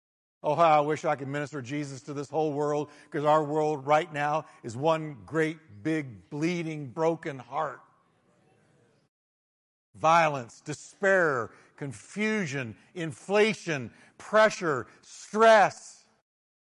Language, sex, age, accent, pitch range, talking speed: English, male, 60-79, American, 150-220 Hz, 110 wpm